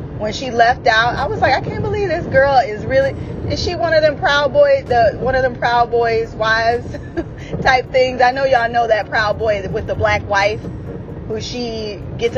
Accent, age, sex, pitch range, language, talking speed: American, 20-39, female, 200-255 Hz, English, 215 wpm